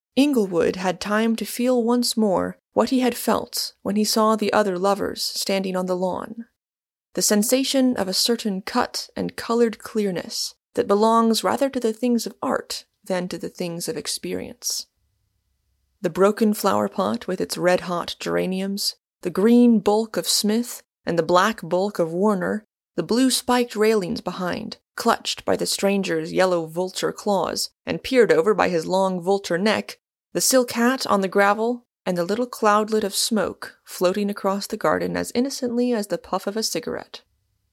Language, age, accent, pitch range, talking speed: English, 20-39, American, 170-230 Hz, 170 wpm